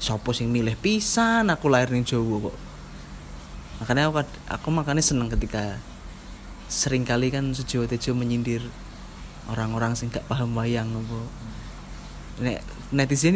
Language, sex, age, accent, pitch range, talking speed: Indonesian, male, 20-39, native, 120-145 Hz, 120 wpm